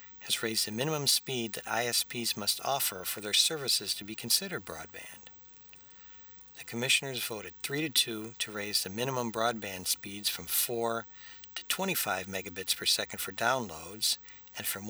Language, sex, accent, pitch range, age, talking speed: English, male, American, 105-120 Hz, 60-79, 155 wpm